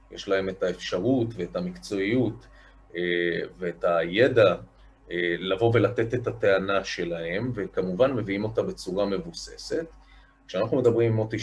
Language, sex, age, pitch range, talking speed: Hebrew, male, 30-49, 90-125 Hz, 115 wpm